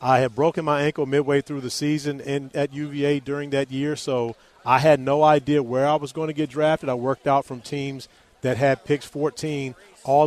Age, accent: 40-59, American